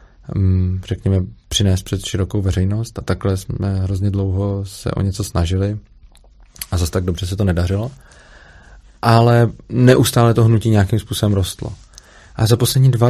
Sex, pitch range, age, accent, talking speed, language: male, 95-115 Hz, 20-39, native, 145 wpm, Czech